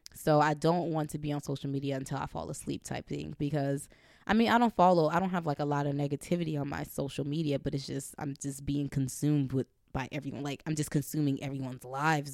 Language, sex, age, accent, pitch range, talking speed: English, female, 20-39, American, 140-155 Hz, 240 wpm